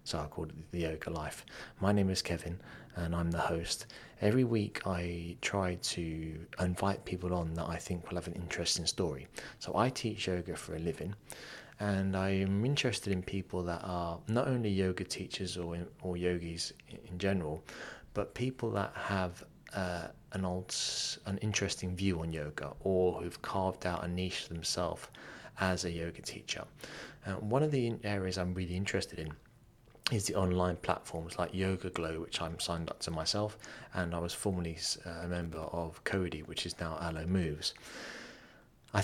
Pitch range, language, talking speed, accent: 85-100 Hz, English, 175 wpm, British